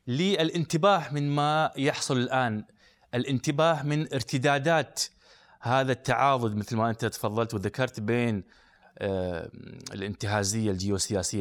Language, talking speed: Arabic, 95 wpm